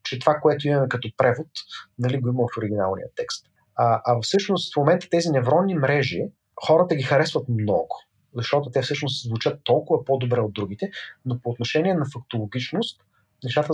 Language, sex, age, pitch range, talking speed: Bulgarian, male, 30-49, 130-180 Hz, 165 wpm